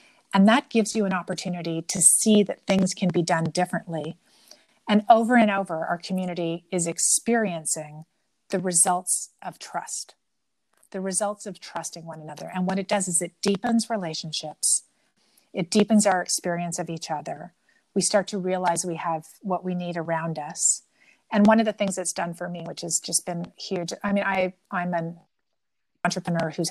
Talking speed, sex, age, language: 175 wpm, female, 40-59, English